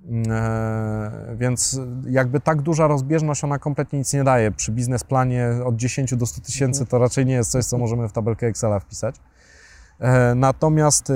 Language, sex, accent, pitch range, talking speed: Polish, male, native, 115-135 Hz, 160 wpm